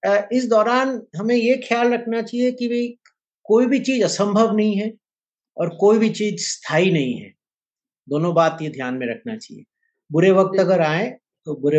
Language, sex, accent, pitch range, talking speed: Hindi, male, native, 150-200 Hz, 180 wpm